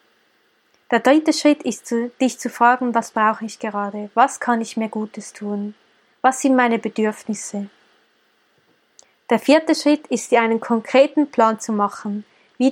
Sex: female